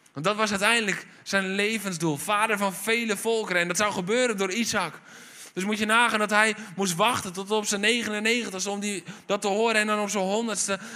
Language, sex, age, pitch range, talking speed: Dutch, male, 20-39, 160-205 Hz, 205 wpm